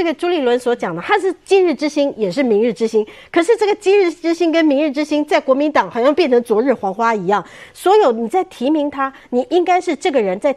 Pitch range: 220-330 Hz